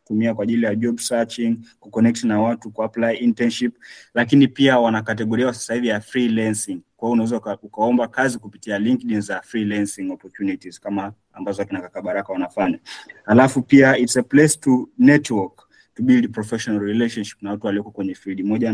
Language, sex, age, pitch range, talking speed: Swahili, male, 30-49, 110-135 Hz, 175 wpm